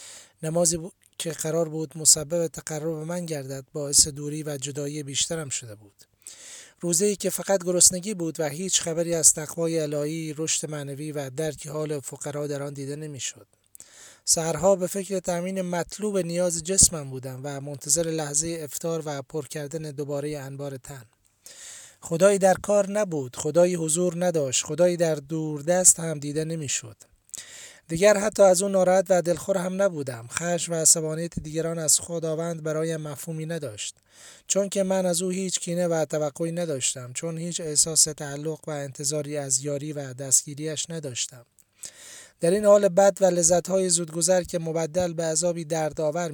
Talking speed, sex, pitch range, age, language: 160 wpm, male, 145-175 Hz, 30-49, Persian